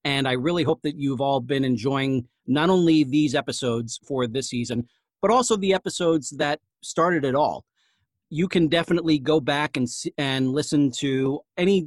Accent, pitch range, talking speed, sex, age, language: American, 130-160 Hz, 170 wpm, male, 40-59, English